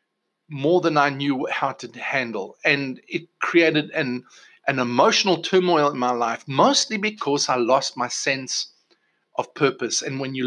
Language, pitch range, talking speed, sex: English, 120-175 Hz, 160 wpm, male